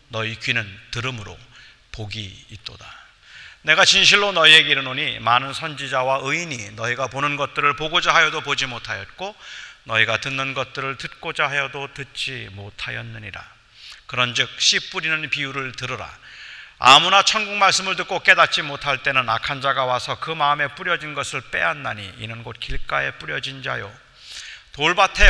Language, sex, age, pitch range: Korean, male, 40-59, 115-150 Hz